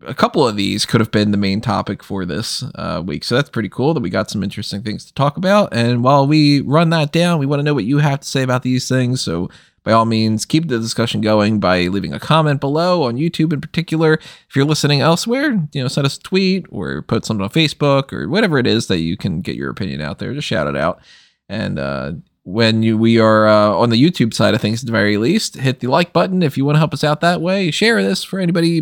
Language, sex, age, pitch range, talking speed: English, male, 20-39, 110-155 Hz, 265 wpm